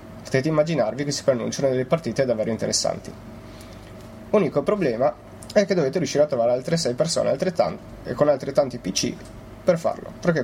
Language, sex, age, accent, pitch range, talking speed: Italian, male, 30-49, native, 110-150 Hz, 160 wpm